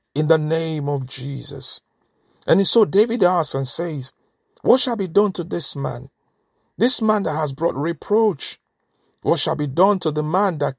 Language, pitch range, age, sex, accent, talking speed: English, 135-195 Hz, 50-69, male, Nigerian, 180 wpm